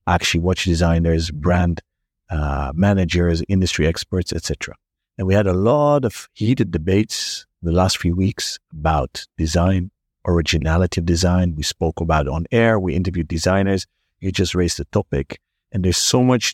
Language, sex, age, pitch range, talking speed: English, male, 50-69, 85-100 Hz, 160 wpm